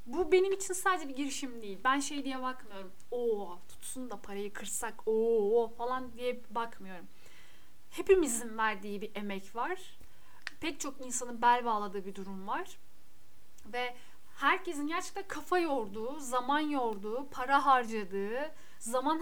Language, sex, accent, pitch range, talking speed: Turkish, female, native, 230-290 Hz, 135 wpm